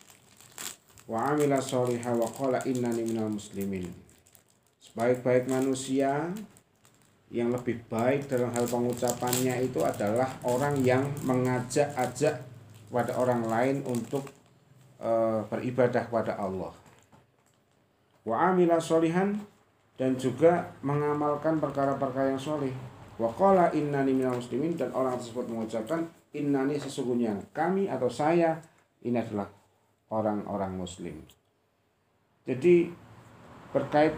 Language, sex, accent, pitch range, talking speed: Indonesian, male, native, 115-140 Hz, 100 wpm